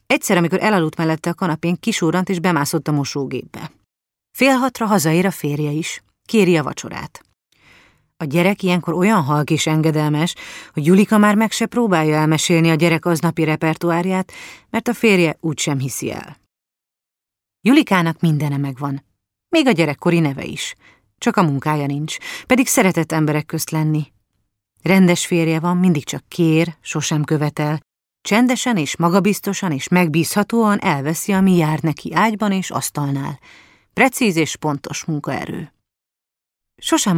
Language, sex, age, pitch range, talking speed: Hungarian, female, 30-49, 155-185 Hz, 140 wpm